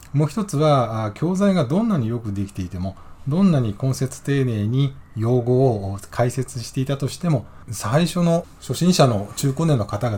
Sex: male